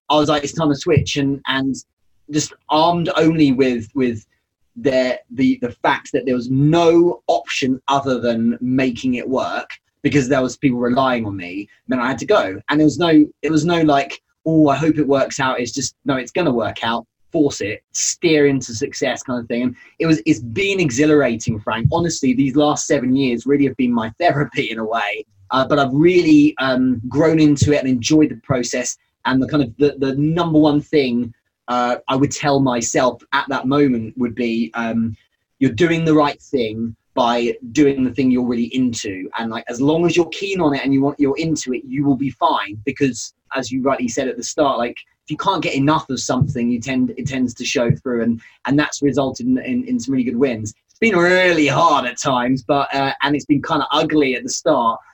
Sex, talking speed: male, 220 wpm